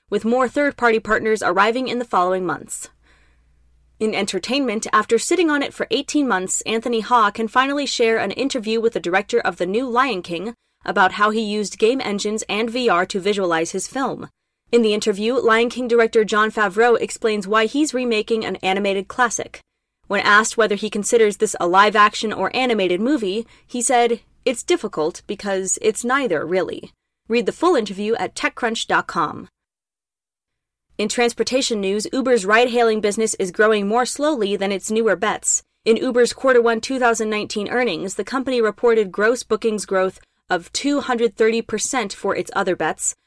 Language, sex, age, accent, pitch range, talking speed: English, female, 20-39, American, 195-240 Hz, 160 wpm